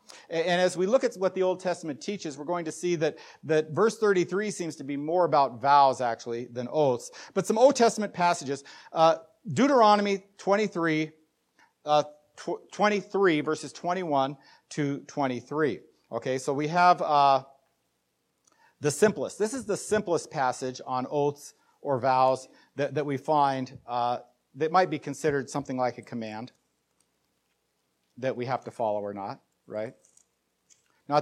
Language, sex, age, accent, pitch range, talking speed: English, male, 50-69, American, 135-195 Hz, 150 wpm